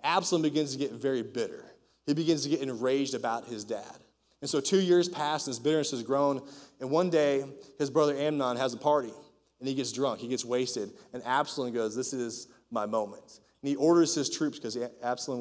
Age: 30-49